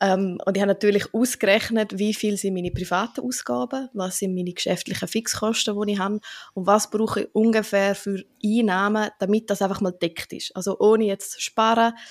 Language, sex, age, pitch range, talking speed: German, female, 20-39, 185-215 Hz, 190 wpm